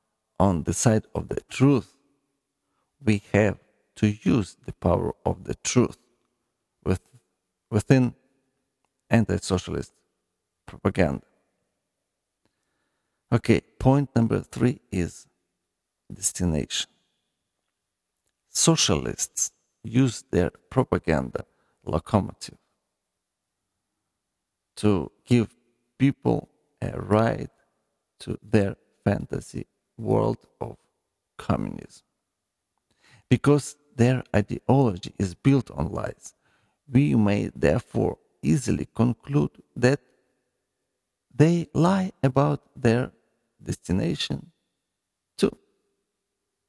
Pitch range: 105-140 Hz